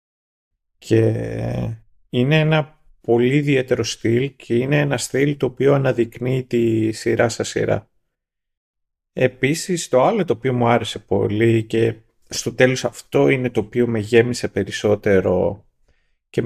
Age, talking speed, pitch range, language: 30-49, 130 wpm, 110-130 Hz, Greek